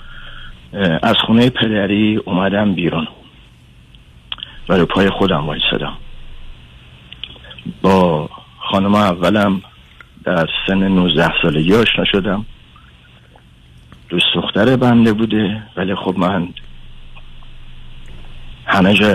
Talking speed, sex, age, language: 80 wpm, male, 60-79, Persian